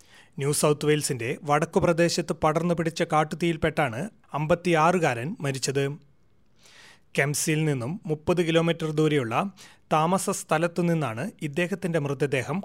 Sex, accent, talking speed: male, native, 90 wpm